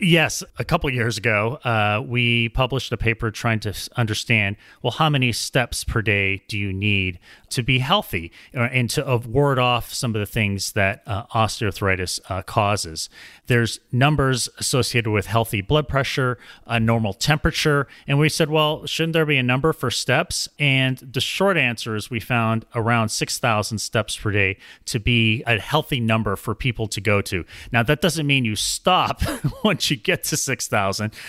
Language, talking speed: English, 180 wpm